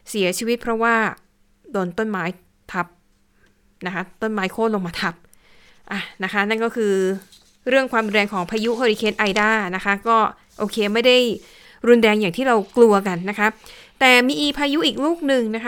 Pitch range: 190-235 Hz